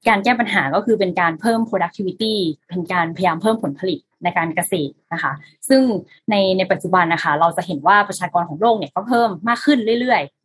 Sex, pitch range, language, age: female, 180-225 Hz, Thai, 20-39